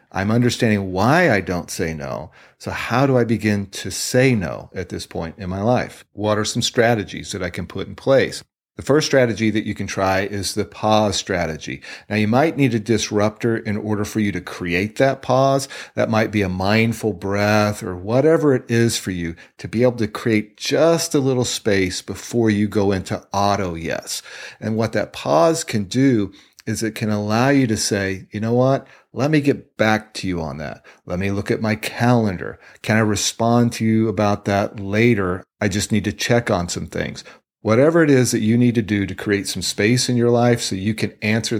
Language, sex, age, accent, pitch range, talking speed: English, male, 40-59, American, 100-120 Hz, 215 wpm